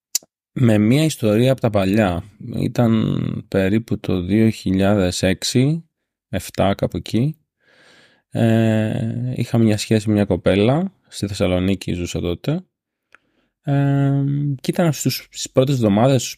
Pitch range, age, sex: 105-150 Hz, 20-39, male